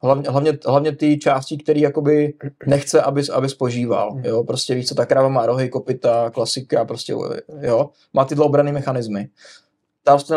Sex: male